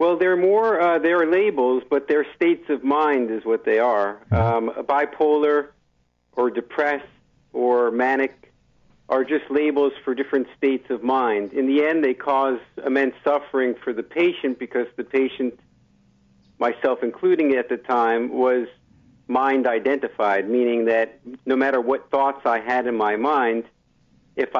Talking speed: 150 wpm